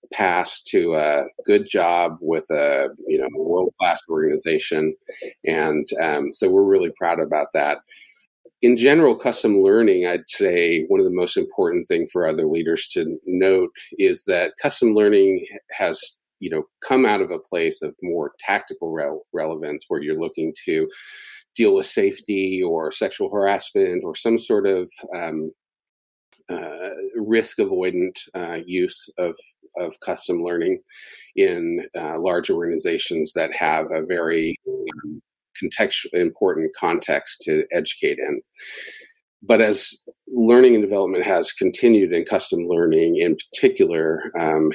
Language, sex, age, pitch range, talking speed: English, male, 40-59, 370-410 Hz, 140 wpm